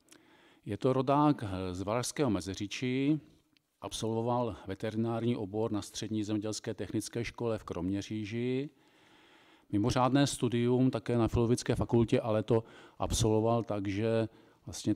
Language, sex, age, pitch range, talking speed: Czech, male, 40-59, 100-130 Hz, 110 wpm